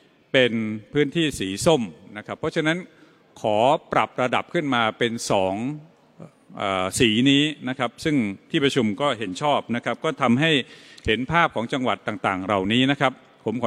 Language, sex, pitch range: Thai, male, 110-145 Hz